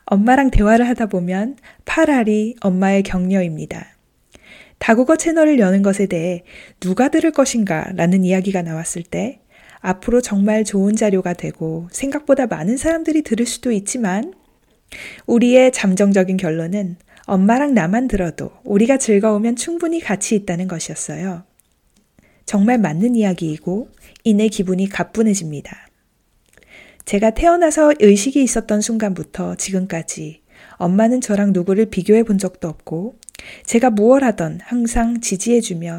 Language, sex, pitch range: Korean, female, 185-235 Hz